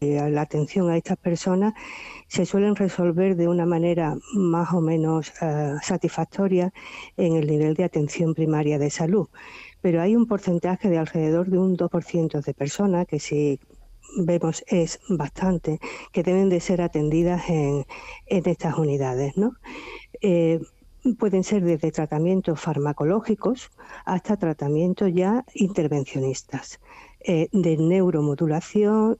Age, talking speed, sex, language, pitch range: 50-69, 125 wpm, female, Spanish, 155-190 Hz